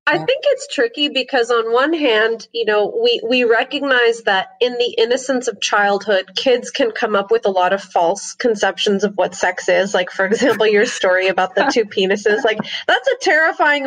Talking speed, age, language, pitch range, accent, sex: 200 wpm, 20-39, English, 210-275 Hz, American, female